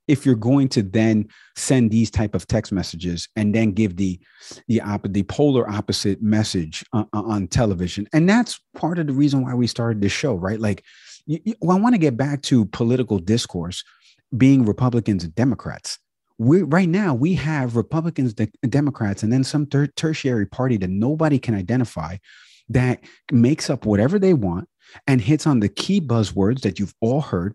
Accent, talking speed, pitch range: American, 185 wpm, 105-140 Hz